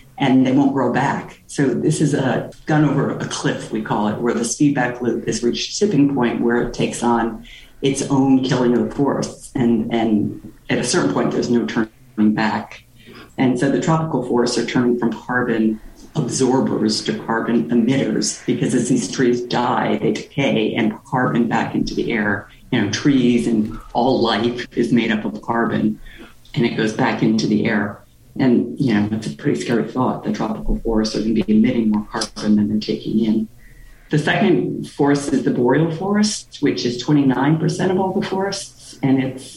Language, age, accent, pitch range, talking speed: English, 40-59, American, 115-140 Hz, 190 wpm